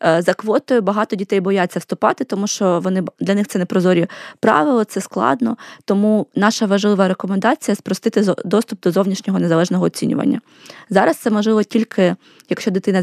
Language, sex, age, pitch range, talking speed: Ukrainian, female, 20-39, 180-220 Hz, 150 wpm